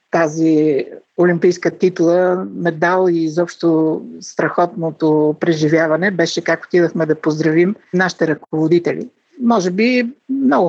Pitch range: 160-200 Hz